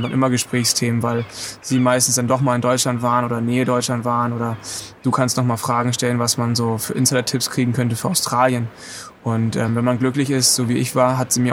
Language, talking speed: German, 245 wpm